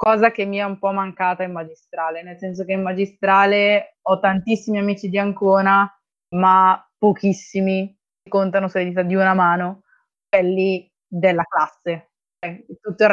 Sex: female